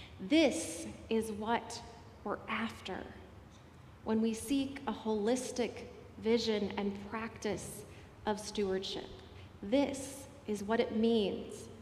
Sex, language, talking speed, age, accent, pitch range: female, English, 100 wpm, 30-49, American, 195-250 Hz